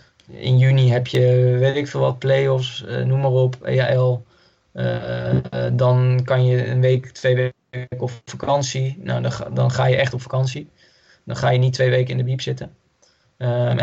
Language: Dutch